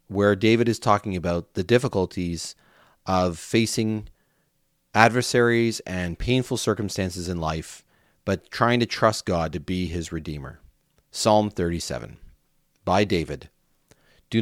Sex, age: male, 30-49